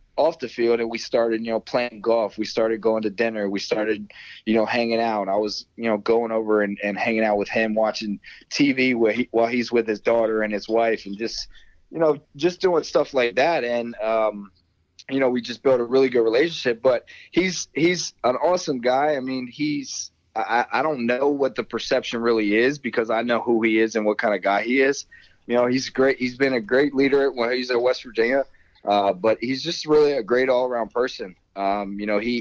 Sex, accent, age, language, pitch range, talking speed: male, American, 20-39, English, 105-130 Hz, 230 wpm